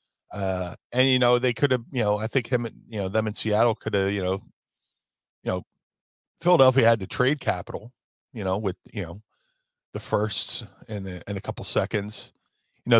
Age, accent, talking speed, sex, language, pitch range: 40-59, American, 190 wpm, male, English, 100-125 Hz